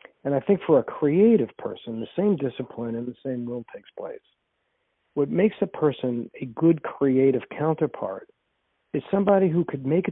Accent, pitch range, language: American, 125-160 Hz, English